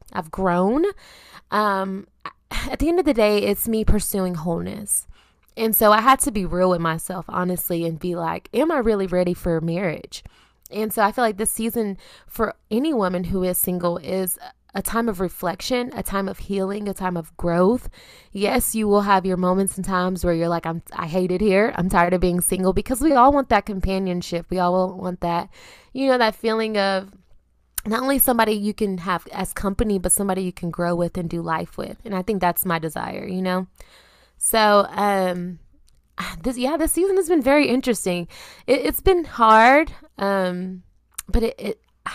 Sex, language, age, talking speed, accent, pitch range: female, English, 20-39, 195 wpm, American, 180-225 Hz